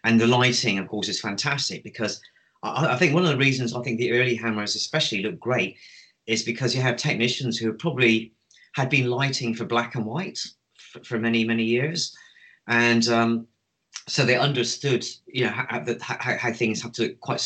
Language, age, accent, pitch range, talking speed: English, 30-49, British, 105-120 Hz, 195 wpm